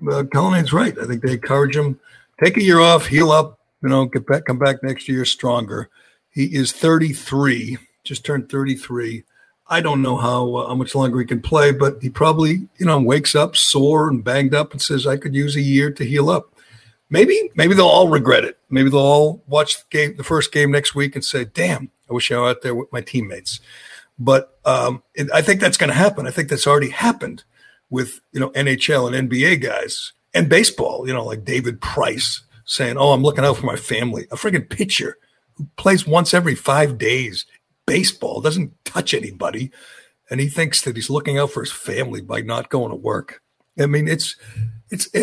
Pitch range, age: 125-150 Hz, 60-79